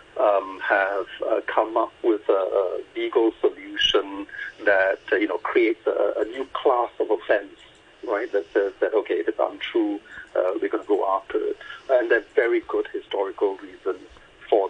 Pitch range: 350-425 Hz